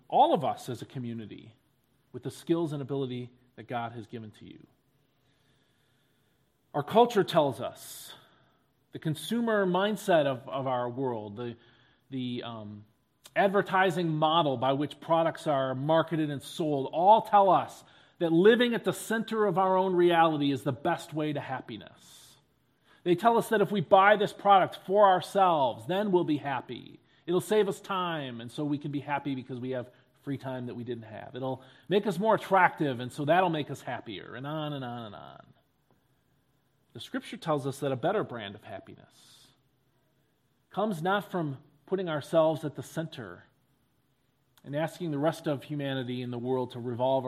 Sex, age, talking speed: male, 40-59, 175 wpm